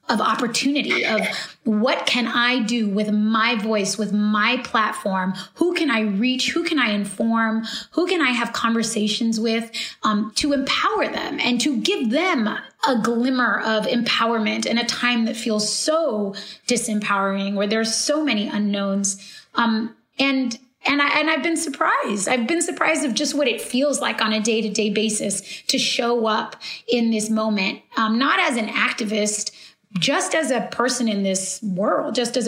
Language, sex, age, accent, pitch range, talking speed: English, female, 20-39, American, 215-265 Hz, 175 wpm